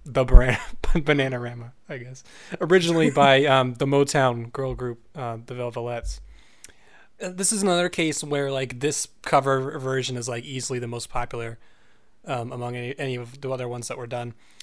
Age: 20-39